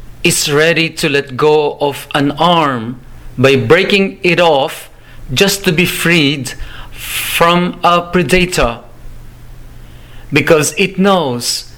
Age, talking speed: 40-59, 110 wpm